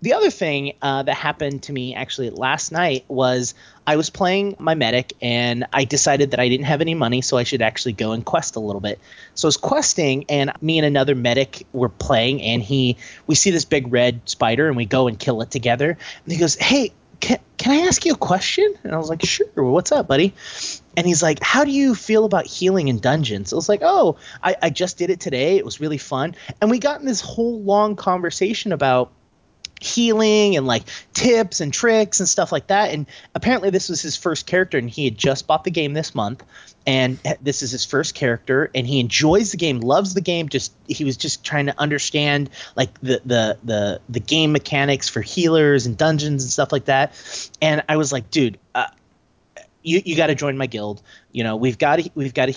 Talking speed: 225 wpm